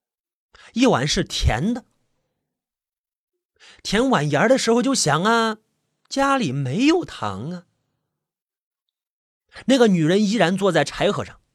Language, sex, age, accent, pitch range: Chinese, male, 30-49, native, 145-225 Hz